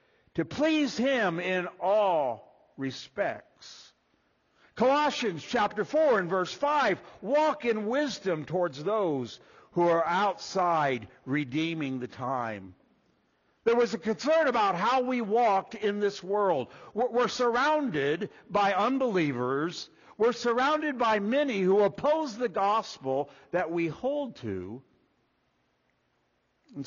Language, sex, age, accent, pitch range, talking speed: English, male, 60-79, American, 170-255 Hz, 115 wpm